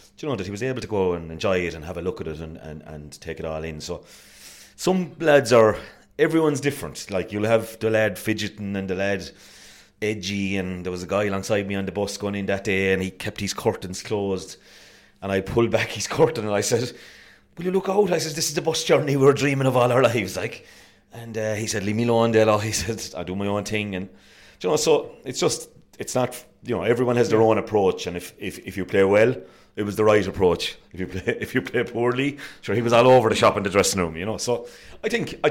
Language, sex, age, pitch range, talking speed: English, male, 30-49, 95-115 Hz, 260 wpm